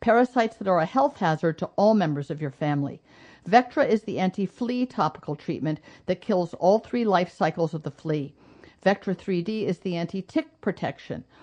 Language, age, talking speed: English, 50-69, 175 wpm